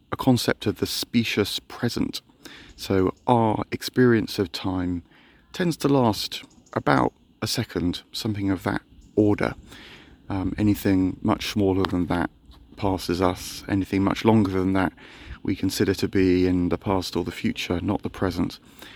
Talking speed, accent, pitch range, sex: 145 wpm, British, 90-110 Hz, male